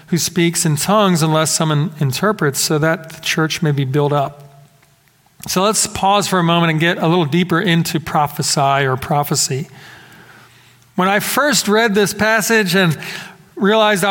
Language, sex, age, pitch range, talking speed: English, male, 40-59, 155-195 Hz, 160 wpm